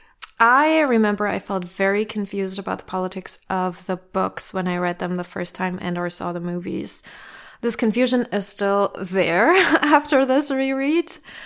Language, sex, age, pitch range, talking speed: English, female, 20-39, 185-230 Hz, 170 wpm